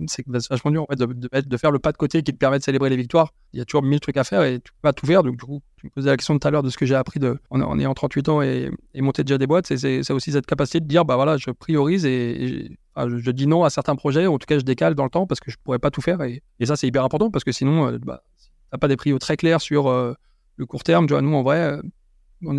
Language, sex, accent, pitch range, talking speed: French, male, French, 130-155 Hz, 335 wpm